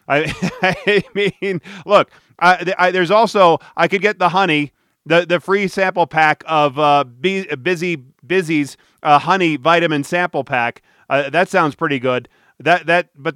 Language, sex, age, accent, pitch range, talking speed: English, male, 40-59, American, 155-195 Hz, 160 wpm